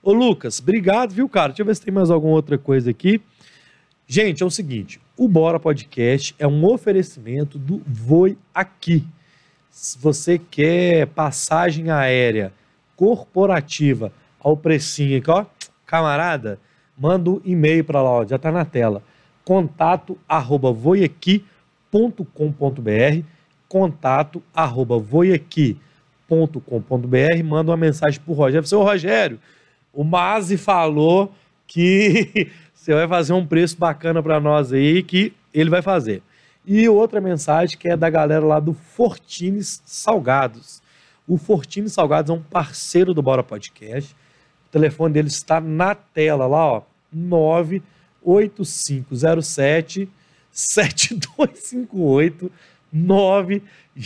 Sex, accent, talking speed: male, Brazilian, 130 wpm